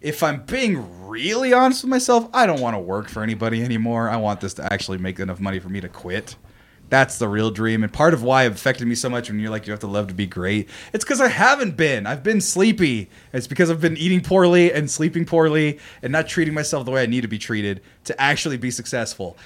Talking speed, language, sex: 255 wpm, English, male